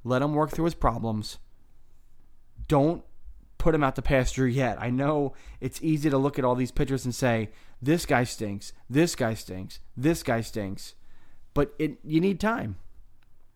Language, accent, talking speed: English, American, 175 wpm